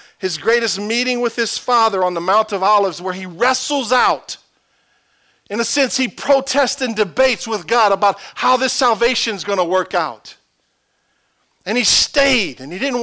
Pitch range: 170-245 Hz